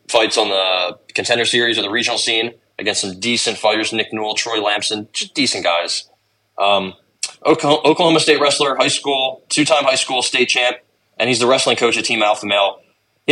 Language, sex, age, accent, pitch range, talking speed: English, male, 20-39, American, 105-135 Hz, 185 wpm